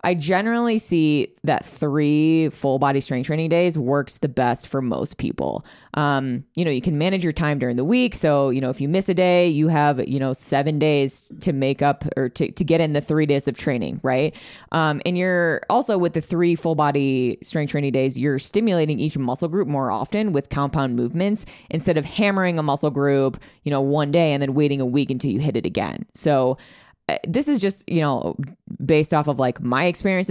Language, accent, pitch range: English, American, 135-170 Hz